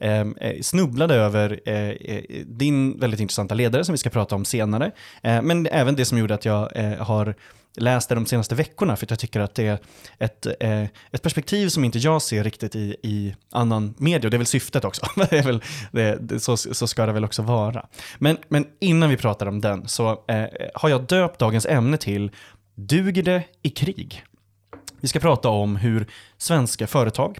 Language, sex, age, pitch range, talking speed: Swedish, male, 20-39, 110-140 Hz, 200 wpm